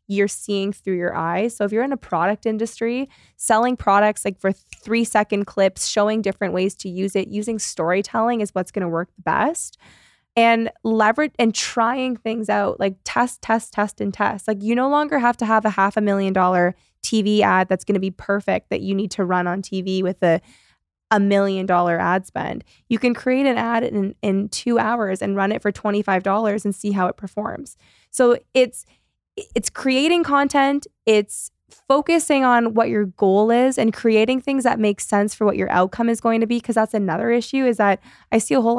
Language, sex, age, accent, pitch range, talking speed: English, female, 20-39, American, 195-245 Hz, 205 wpm